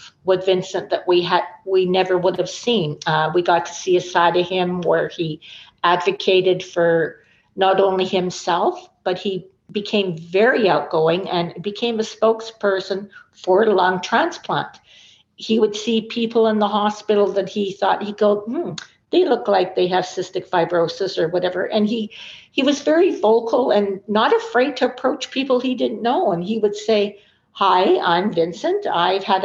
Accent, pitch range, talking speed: American, 185-225 Hz, 170 wpm